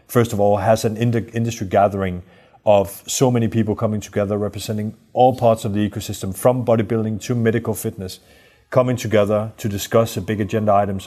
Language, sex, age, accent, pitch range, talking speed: Swedish, male, 30-49, Danish, 100-110 Hz, 175 wpm